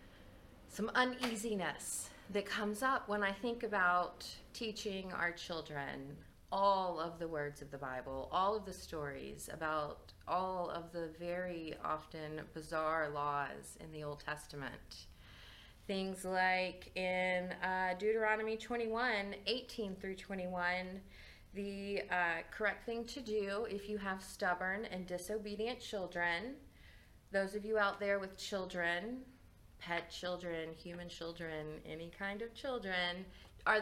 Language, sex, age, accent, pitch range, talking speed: English, female, 30-49, American, 155-205 Hz, 130 wpm